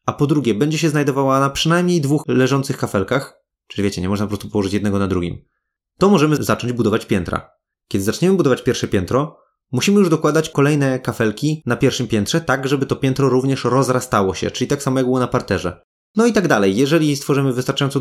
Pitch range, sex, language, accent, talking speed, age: 115-145 Hz, male, Polish, native, 200 wpm, 20-39